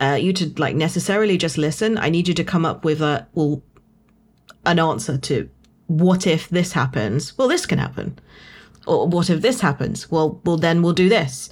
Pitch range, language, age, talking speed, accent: 155-185 Hz, English, 40-59, 200 wpm, British